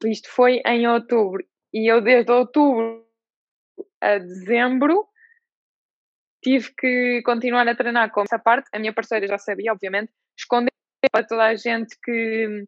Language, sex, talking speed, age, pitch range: Portuguese, female, 140 wpm, 20-39, 220-255 Hz